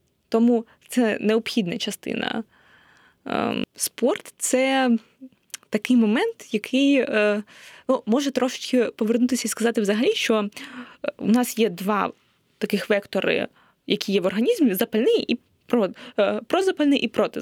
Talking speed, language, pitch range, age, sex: 110 wpm, Ukrainian, 215-255 Hz, 20-39, female